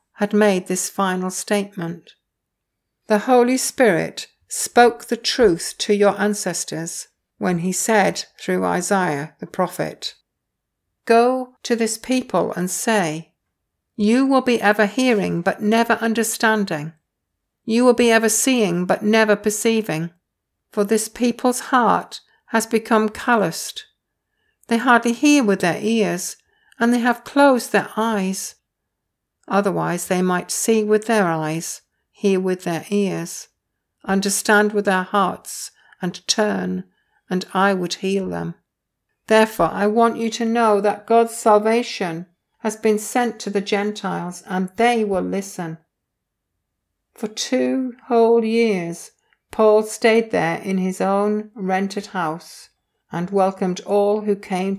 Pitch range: 185-225 Hz